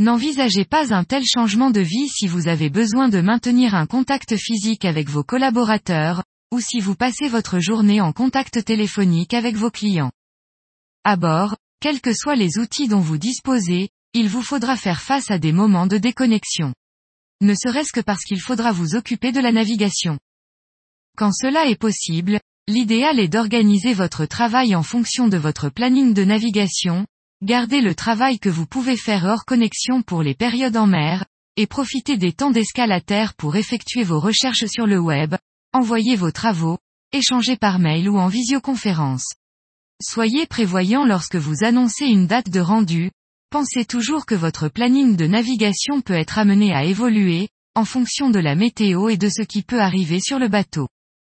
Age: 20-39